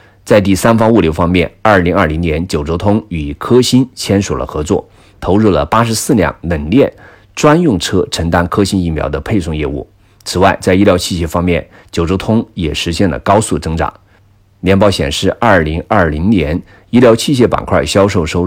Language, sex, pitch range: Chinese, male, 85-100 Hz